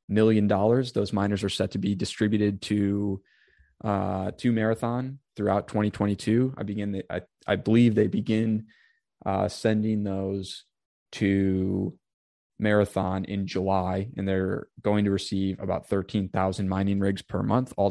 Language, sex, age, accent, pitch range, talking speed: English, male, 20-39, American, 95-105 Hz, 140 wpm